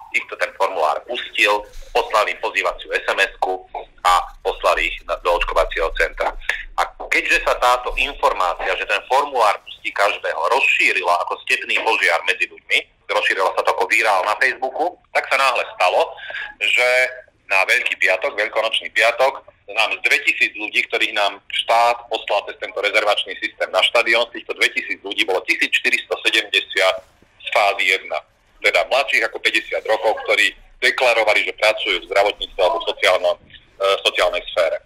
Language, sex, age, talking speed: Slovak, male, 40-59, 150 wpm